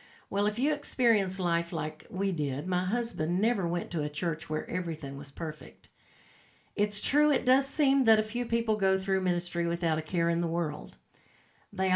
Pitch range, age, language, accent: 170-220 Hz, 50-69, English, American